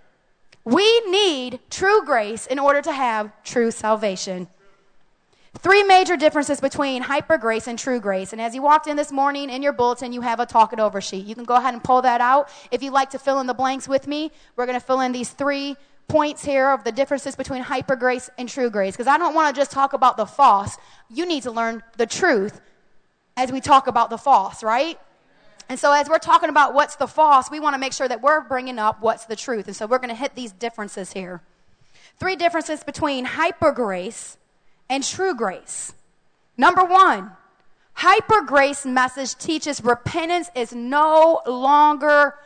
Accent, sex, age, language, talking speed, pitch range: American, female, 20-39, English, 200 wpm, 235-295 Hz